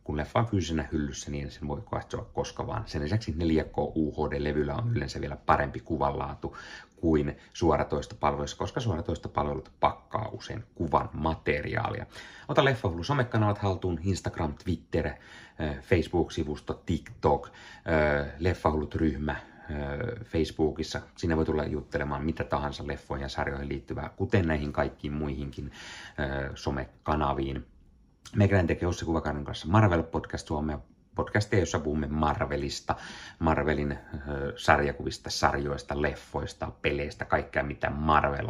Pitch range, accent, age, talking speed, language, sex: 75-100 Hz, native, 30-49, 115 wpm, Finnish, male